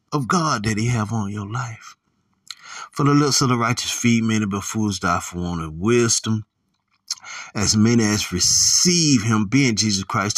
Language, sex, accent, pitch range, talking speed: English, male, American, 95-125 Hz, 180 wpm